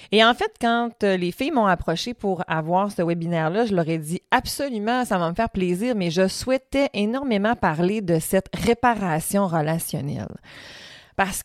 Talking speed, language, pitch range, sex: 170 wpm, French, 180-230 Hz, female